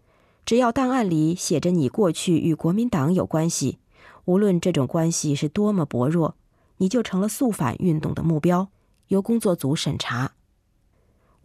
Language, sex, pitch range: Chinese, female, 145-200 Hz